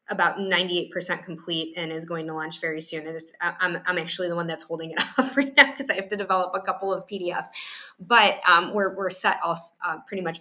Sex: female